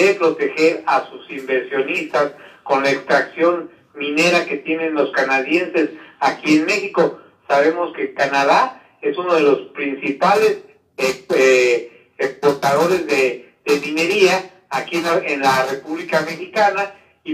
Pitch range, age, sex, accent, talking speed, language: 155-215 Hz, 50-69, male, Mexican, 115 wpm, Spanish